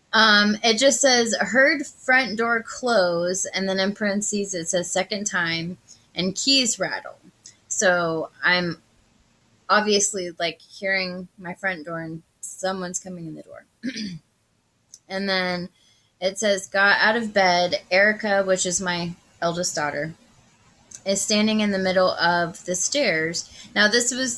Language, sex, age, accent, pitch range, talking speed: English, female, 20-39, American, 170-215 Hz, 145 wpm